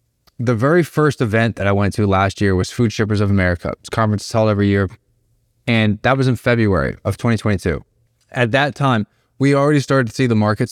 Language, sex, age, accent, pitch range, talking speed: English, male, 20-39, American, 105-135 Hz, 215 wpm